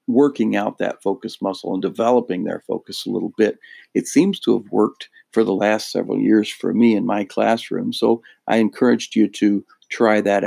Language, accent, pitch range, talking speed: English, American, 105-135 Hz, 195 wpm